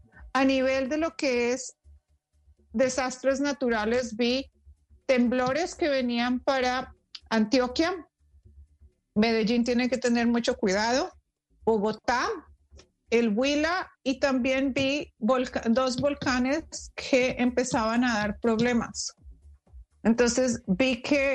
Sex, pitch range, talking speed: female, 220-265 Hz, 100 wpm